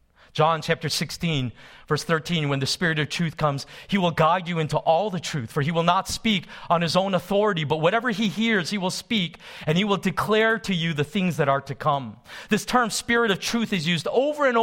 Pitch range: 160-245 Hz